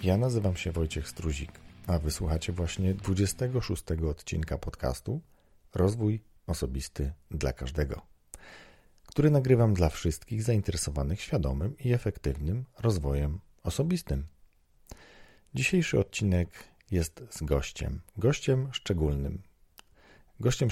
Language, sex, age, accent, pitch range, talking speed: Polish, male, 40-59, native, 85-110 Hz, 95 wpm